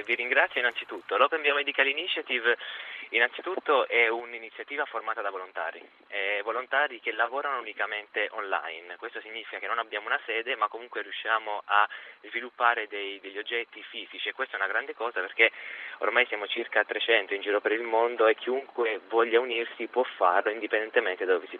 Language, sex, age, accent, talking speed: Italian, male, 20-39, native, 170 wpm